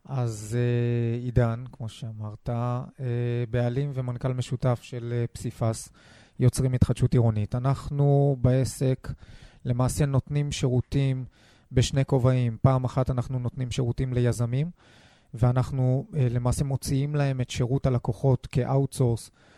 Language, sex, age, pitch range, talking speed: Hebrew, male, 30-49, 120-140 Hz, 100 wpm